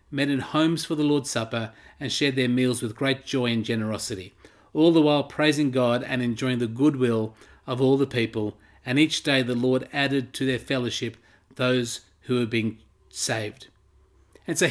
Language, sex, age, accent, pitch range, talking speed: English, male, 40-59, Australian, 130-170 Hz, 185 wpm